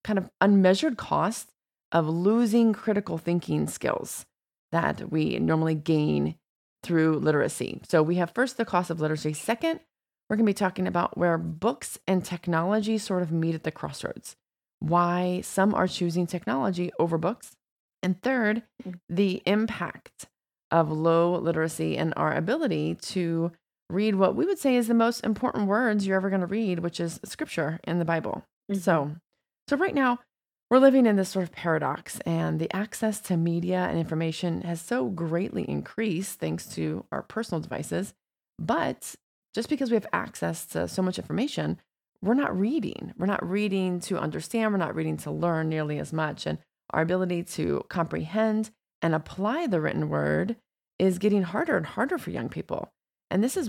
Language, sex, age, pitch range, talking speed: English, female, 30-49, 165-210 Hz, 170 wpm